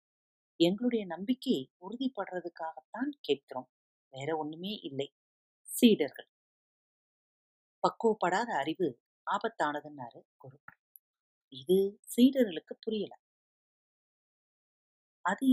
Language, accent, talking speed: Tamil, native, 60 wpm